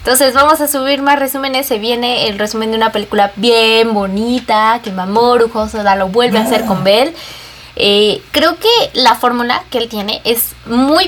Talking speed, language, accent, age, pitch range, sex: 185 wpm, Spanish, Mexican, 20-39, 195-275 Hz, female